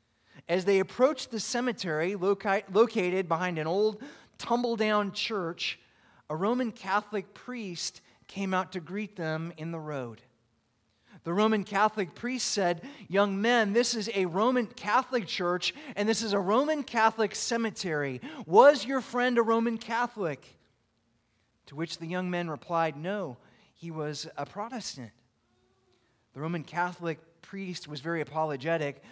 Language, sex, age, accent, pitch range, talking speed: English, male, 30-49, American, 150-210 Hz, 140 wpm